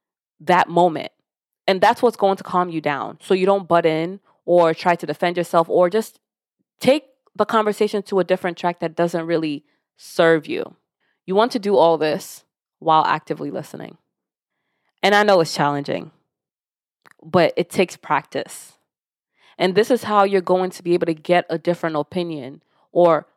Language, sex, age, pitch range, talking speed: English, female, 20-39, 160-195 Hz, 170 wpm